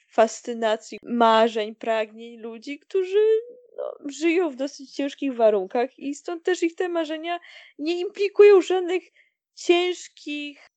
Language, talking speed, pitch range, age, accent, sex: Polish, 115 wpm, 215-305 Hz, 10-29, native, female